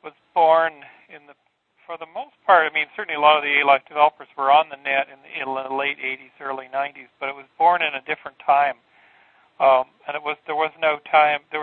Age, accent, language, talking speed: 40-59, American, English, 225 wpm